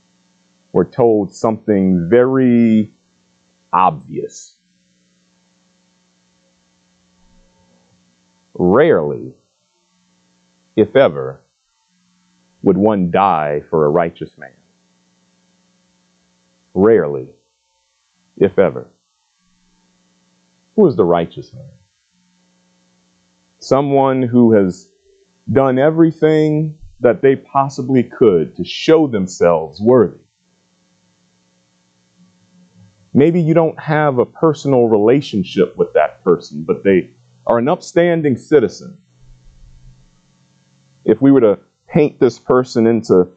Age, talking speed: 40-59, 85 wpm